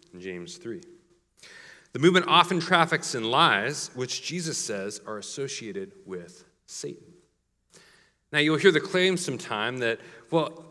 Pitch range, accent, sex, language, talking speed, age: 110-170 Hz, American, male, English, 130 wpm, 40-59